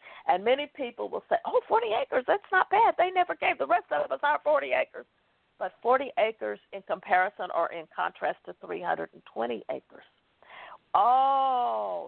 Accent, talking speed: American, 165 wpm